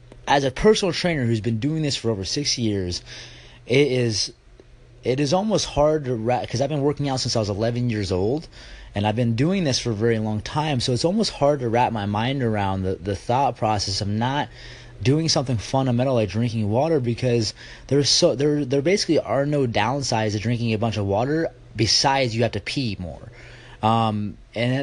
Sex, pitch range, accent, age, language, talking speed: male, 110-145 Hz, American, 20-39, English, 205 wpm